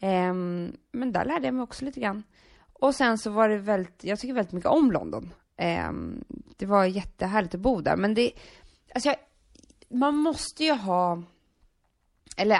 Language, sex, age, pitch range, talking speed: English, female, 20-39, 180-245 Hz, 170 wpm